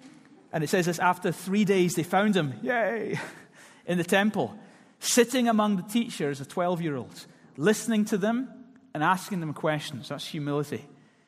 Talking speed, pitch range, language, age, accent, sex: 165 wpm, 135-180 Hz, English, 30-49, British, male